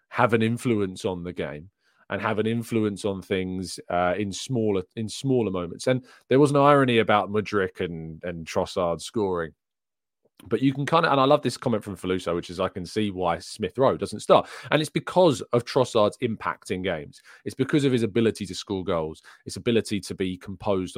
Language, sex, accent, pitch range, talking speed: English, male, British, 90-120 Hz, 205 wpm